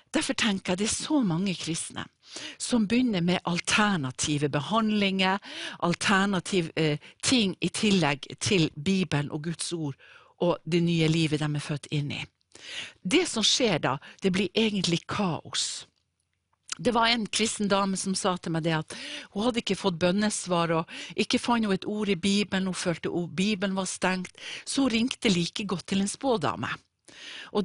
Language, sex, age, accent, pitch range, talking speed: English, female, 60-79, Swedish, 160-210 Hz, 165 wpm